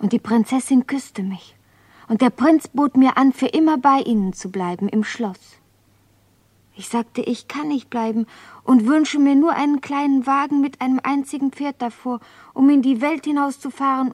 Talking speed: 180 wpm